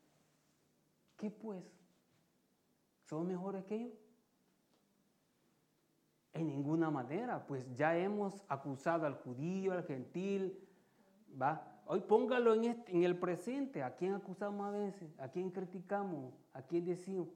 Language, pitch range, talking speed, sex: Italian, 150-200 Hz, 120 wpm, male